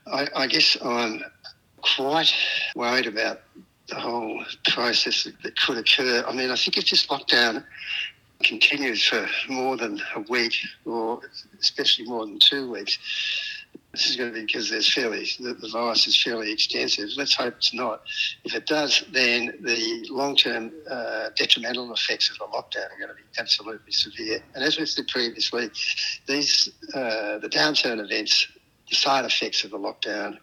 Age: 60-79